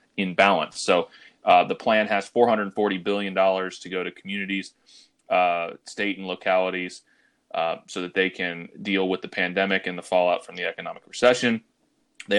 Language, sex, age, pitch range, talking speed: English, male, 30-49, 95-110 Hz, 170 wpm